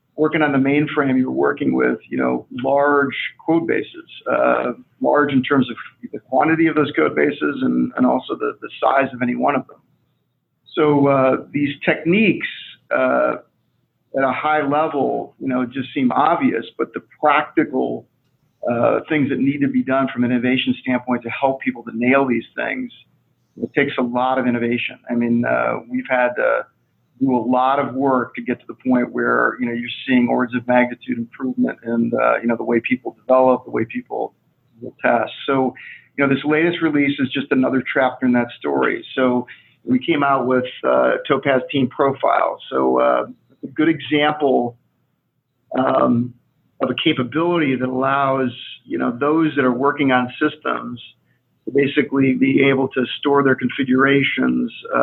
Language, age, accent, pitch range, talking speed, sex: English, 40-59, American, 125-145 Hz, 180 wpm, male